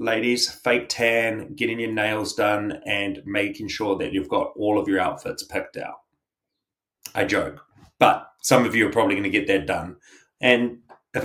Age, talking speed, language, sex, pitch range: 30-49, 180 wpm, English, male, 100-125 Hz